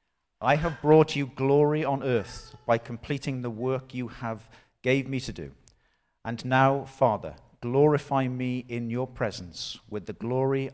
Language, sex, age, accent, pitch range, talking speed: English, male, 50-69, British, 110-140 Hz, 155 wpm